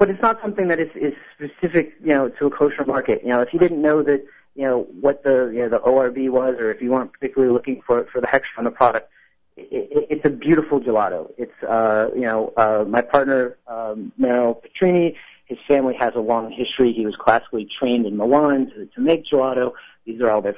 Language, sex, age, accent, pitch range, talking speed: English, male, 40-59, American, 120-145 Hz, 230 wpm